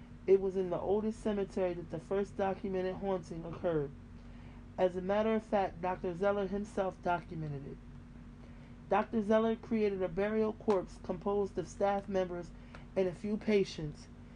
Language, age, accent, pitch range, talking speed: English, 30-49, American, 175-205 Hz, 150 wpm